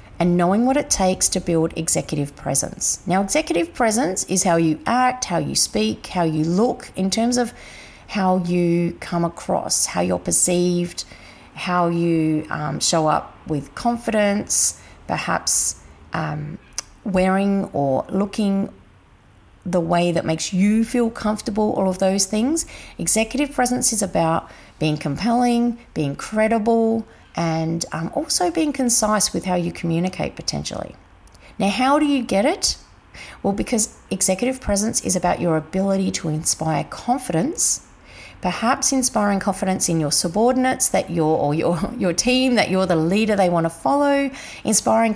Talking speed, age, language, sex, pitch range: 145 wpm, 40-59, English, female, 165-230 Hz